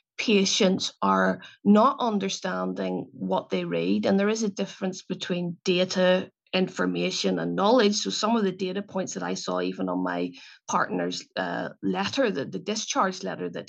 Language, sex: English, female